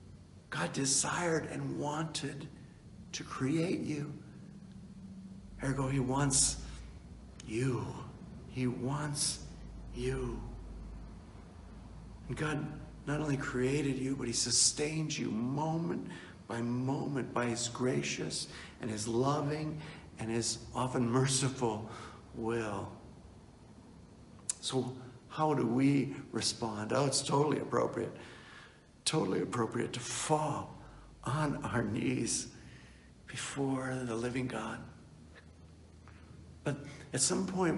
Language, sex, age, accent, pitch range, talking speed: English, male, 60-79, American, 110-150 Hz, 100 wpm